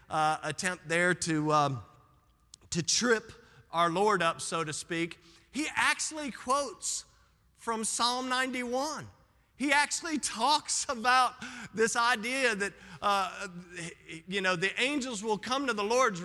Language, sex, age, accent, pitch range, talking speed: English, male, 40-59, American, 150-225 Hz, 135 wpm